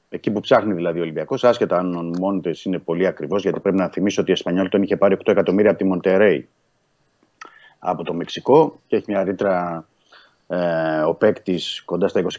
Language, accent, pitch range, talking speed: Greek, native, 95-125 Hz, 200 wpm